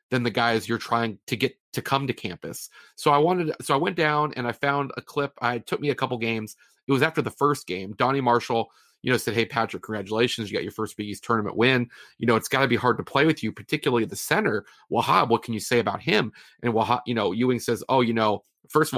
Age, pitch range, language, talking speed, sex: 30-49, 115-150 Hz, English, 270 wpm, male